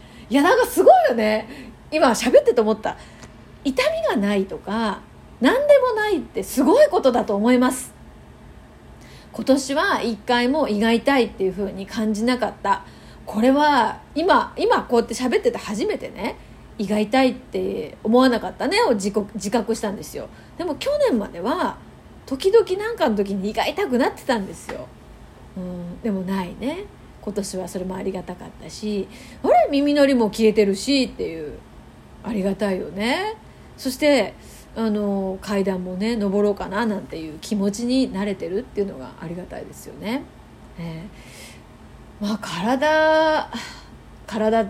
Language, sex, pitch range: Japanese, female, 210-290 Hz